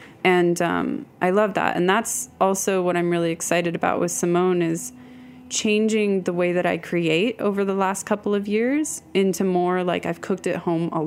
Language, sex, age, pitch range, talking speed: English, female, 20-39, 175-215 Hz, 195 wpm